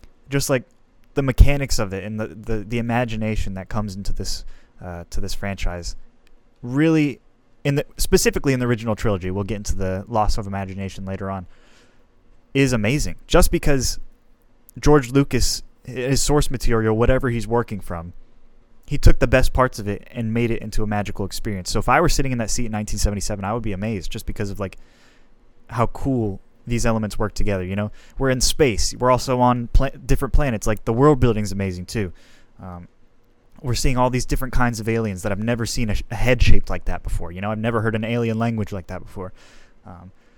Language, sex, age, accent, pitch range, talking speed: English, male, 20-39, American, 100-125 Hz, 205 wpm